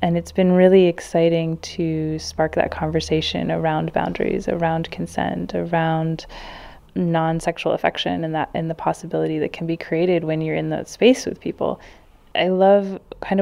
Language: English